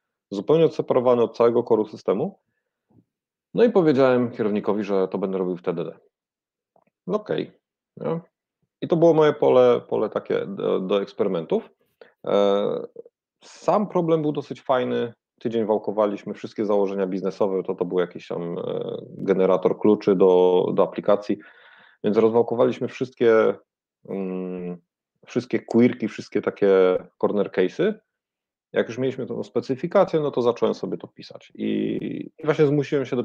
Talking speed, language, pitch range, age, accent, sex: 135 wpm, Polish, 95-130 Hz, 40-59, native, male